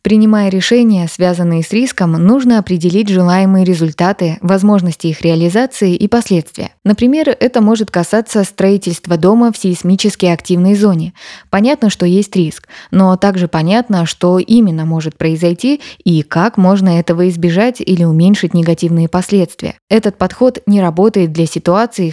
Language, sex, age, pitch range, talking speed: Russian, female, 20-39, 170-210 Hz, 135 wpm